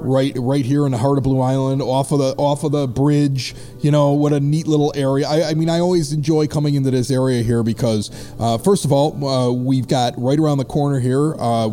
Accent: American